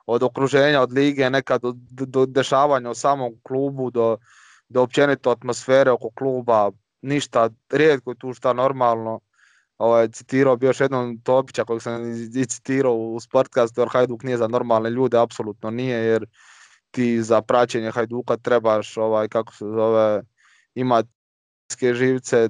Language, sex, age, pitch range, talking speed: Croatian, male, 20-39, 120-140 Hz, 135 wpm